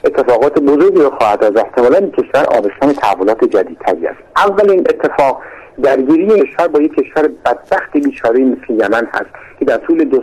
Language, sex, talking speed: Persian, male, 170 wpm